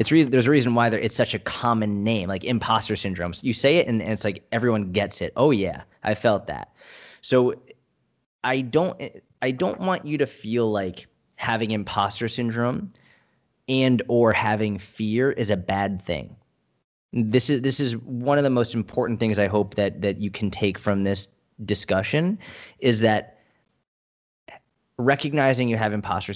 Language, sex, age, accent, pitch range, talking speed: English, male, 30-49, American, 105-125 Hz, 175 wpm